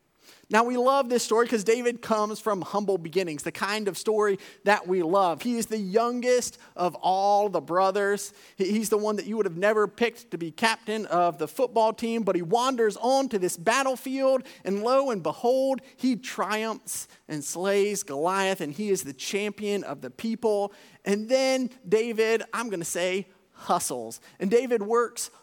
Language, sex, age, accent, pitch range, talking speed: English, male, 30-49, American, 200-250 Hz, 180 wpm